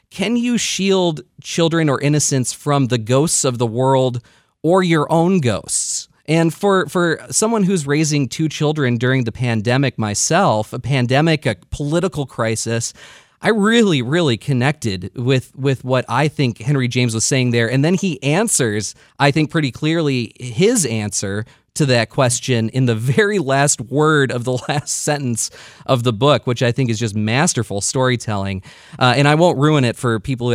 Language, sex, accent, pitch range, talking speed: English, male, American, 120-160 Hz, 175 wpm